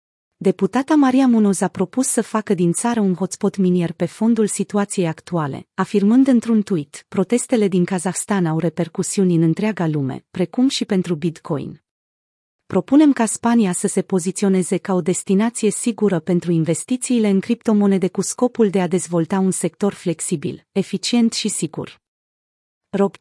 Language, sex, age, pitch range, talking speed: Romanian, female, 30-49, 175-220 Hz, 145 wpm